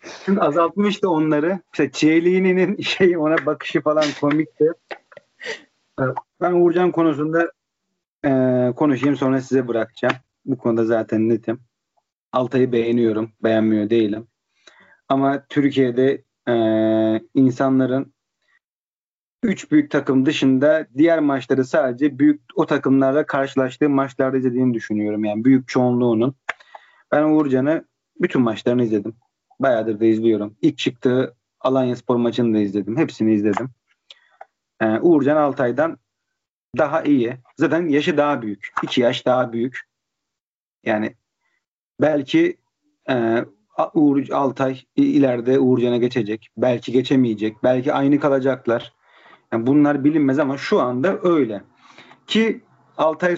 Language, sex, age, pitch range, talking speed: Turkish, male, 40-59, 120-155 Hz, 110 wpm